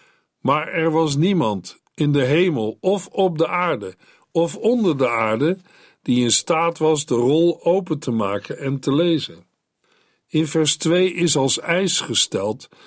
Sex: male